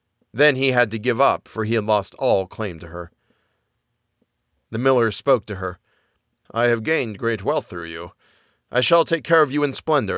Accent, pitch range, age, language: American, 115-170 Hz, 40-59, English